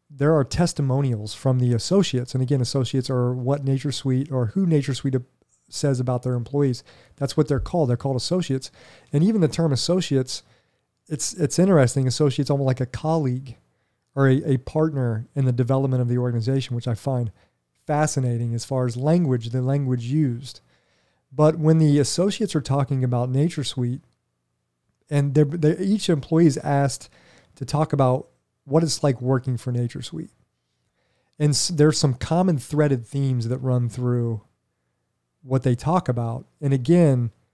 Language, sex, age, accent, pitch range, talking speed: English, male, 40-59, American, 125-150 Hz, 160 wpm